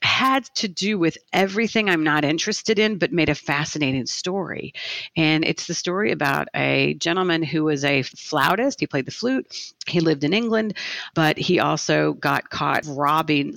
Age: 40-59